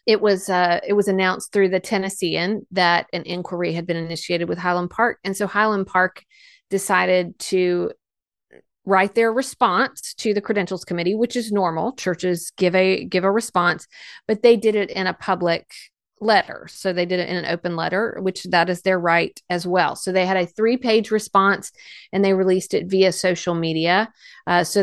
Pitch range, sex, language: 180-210 Hz, female, English